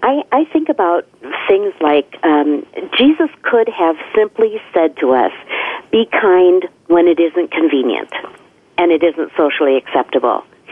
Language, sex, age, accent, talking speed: English, female, 50-69, American, 140 wpm